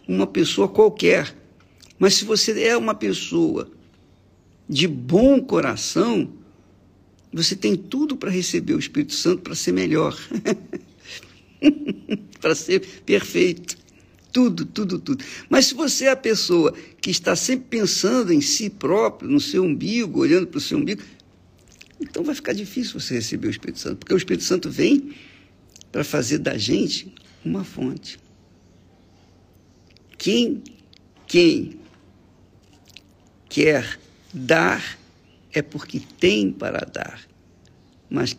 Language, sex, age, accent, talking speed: Portuguese, male, 60-79, Brazilian, 125 wpm